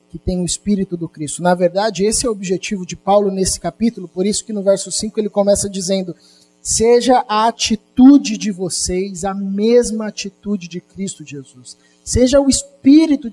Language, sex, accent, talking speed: Portuguese, male, Brazilian, 175 wpm